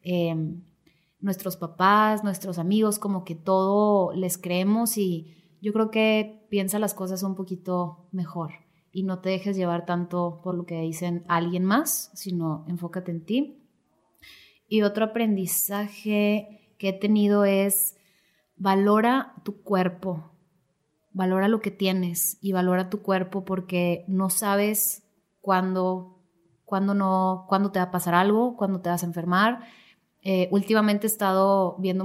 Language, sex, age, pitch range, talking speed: Spanish, female, 30-49, 180-205 Hz, 140 wpm